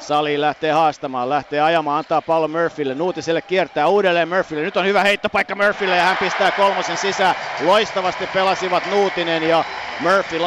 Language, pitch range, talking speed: Finnish, 155-185 Hz, 155 wpm